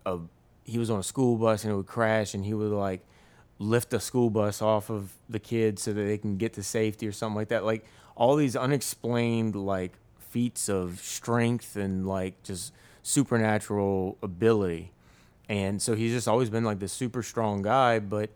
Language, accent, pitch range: English, American, 95-115 Hz